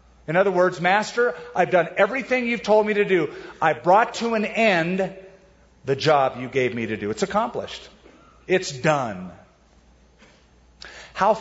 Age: 50-69